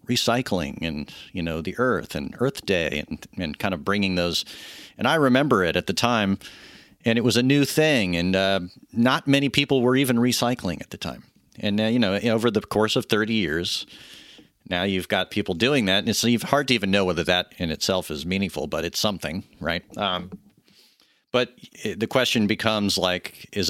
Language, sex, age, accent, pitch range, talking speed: English, male, 40-59, American, 95-115 Hz, 195 wpm